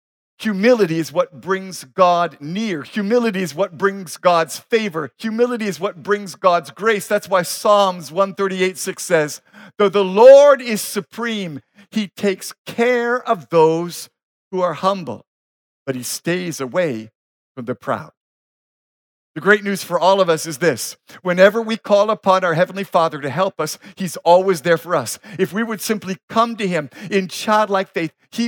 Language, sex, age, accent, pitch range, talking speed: English, male, 50-69, American, 180-230 Hz, 165 wpm